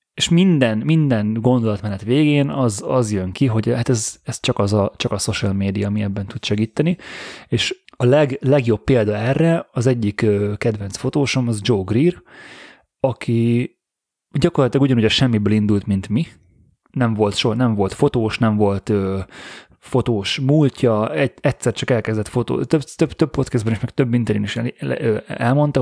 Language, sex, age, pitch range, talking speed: Hungarian, male, 30-49, 105-130 Hz, 160 wpm